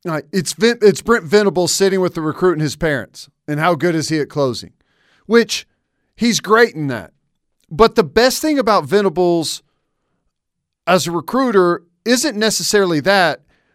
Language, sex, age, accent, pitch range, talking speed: English, male, 40-59, American, 160-205 Hz, 150 wpm